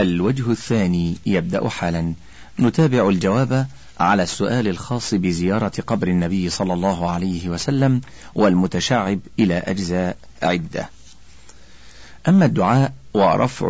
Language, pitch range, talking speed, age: Arabic, 85-120 Hz, 100 wpm, 50-69